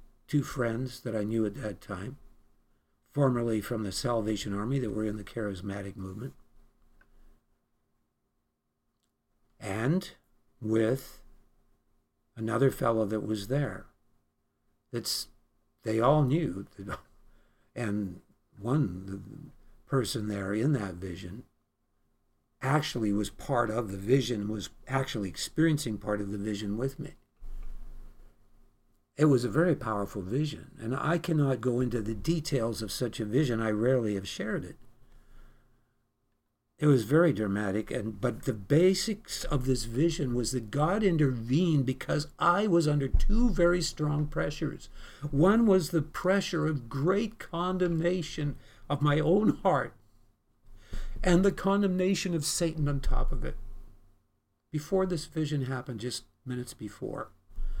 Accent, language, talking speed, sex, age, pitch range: American, English, 130 wpm, male, 60-79, 105-150 Hz